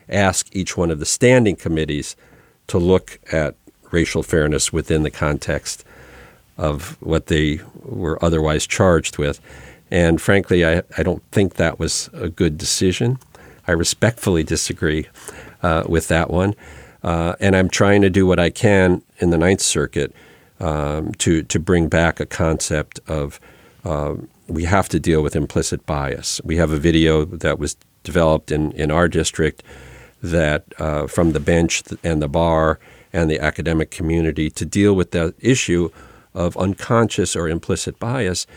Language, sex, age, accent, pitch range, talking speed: English, male, 50-69, American, 80-95 Hz, 160 wpm